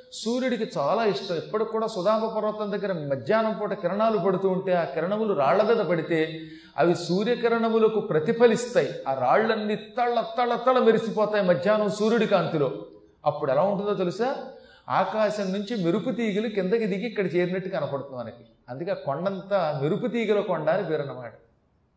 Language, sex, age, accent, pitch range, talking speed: Telugu, male, 40-59, native, 170-220 Hz, 135 wpm